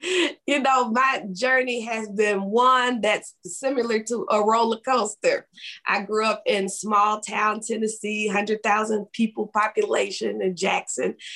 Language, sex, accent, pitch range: English, female, American, 185-250 Hz